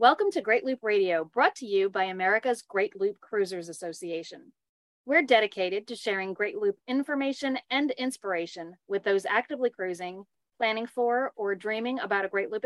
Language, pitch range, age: English, 195-245 Hz, 40-59